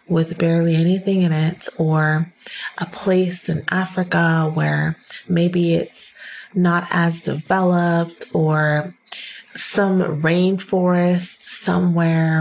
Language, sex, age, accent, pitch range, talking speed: English, female, 30-49, American, 165-190 Hz, 95 wpm